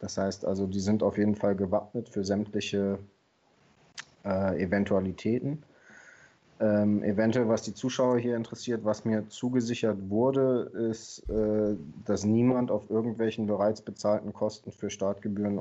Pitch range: 105-120 Hz